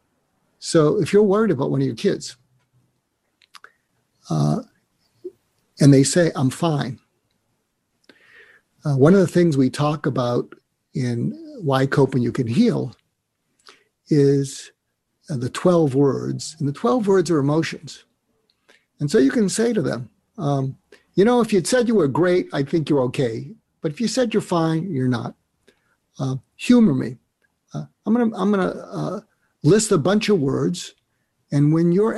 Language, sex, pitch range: English, male, 135-180 Hz